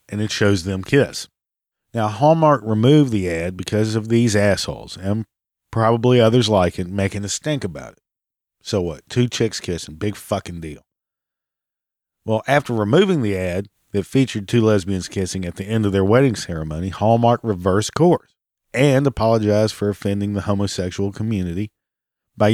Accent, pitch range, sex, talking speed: American, 100-125 Hz, male, 160 wpm